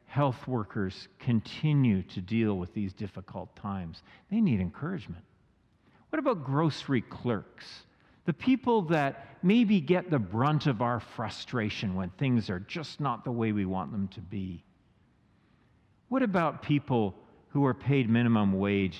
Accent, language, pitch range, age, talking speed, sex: American, English, 100-150 Hz, 50-69, 145 wpm, male